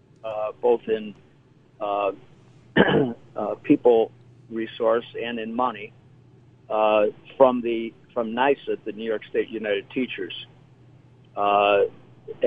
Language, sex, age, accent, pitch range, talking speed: English, male, 50-69, American, 115-135 Hz, 105 wpm